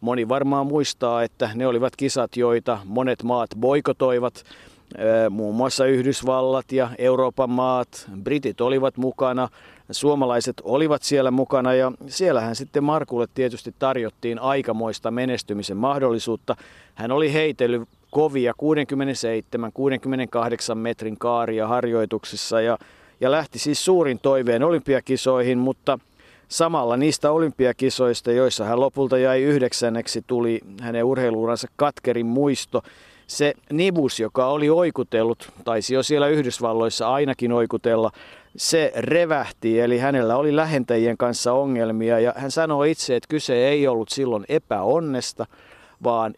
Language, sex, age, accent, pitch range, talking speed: Finnish, male, 50-69, native, 115-140 Hz, 120 wpm